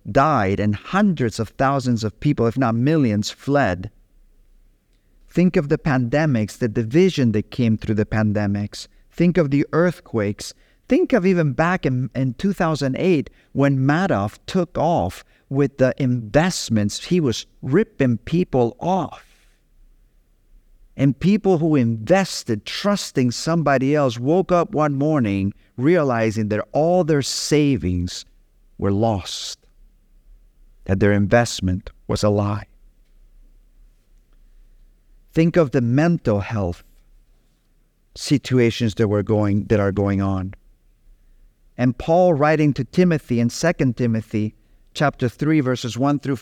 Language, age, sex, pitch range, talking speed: English, 50-69, male, 105-145 Hz, 125 wpm